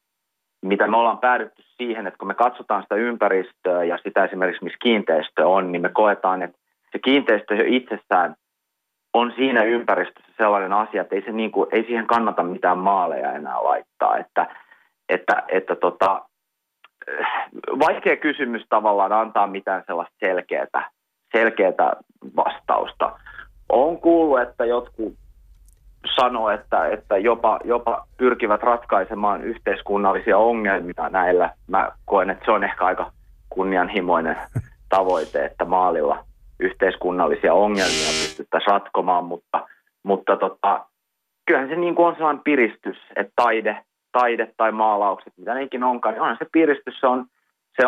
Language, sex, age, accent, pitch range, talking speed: Finnish, male, 30-49, native, 95-125 Hz, 135 wpm